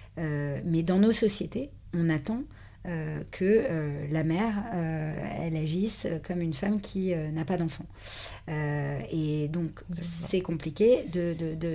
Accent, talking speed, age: French, 160 wpm, 40-59